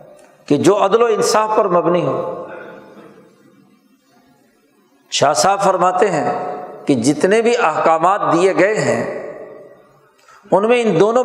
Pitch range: 170-220 Hz